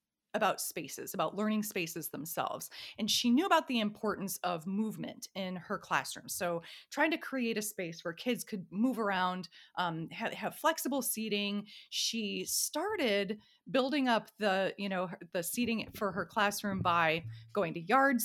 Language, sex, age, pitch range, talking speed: English, female, 30-49, 180-240 Hz, 160 wpm